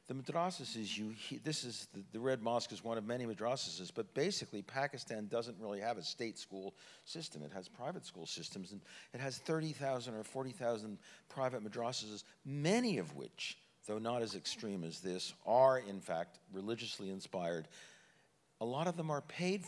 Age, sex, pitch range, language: 50-69, male, 100-130 Hz, English